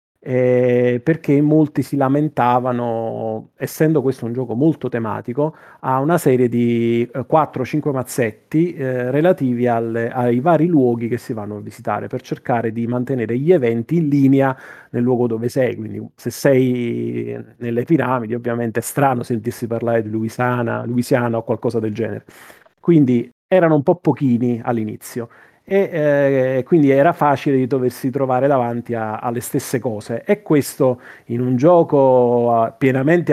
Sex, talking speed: male, 150 wpm